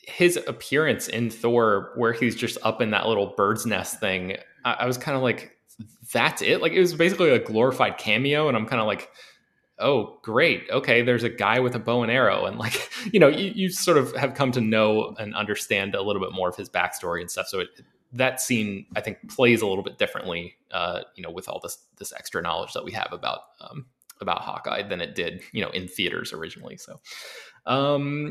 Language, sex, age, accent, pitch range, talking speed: English, male, 20-39, American, 105-130 Hz, 225 wpm